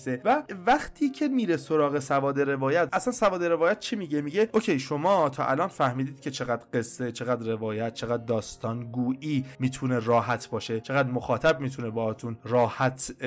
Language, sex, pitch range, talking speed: Persian, male, 125-175 Hz, 155 wpm